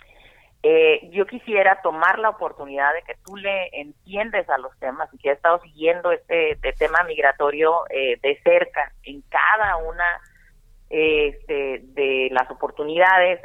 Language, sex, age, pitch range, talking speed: Spanish, female, 30-49, 155-230 Hz, 145 wpm